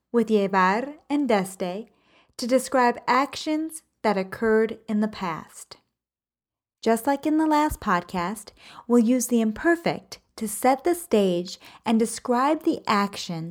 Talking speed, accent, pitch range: 135 wpm, American, 190-255 Hz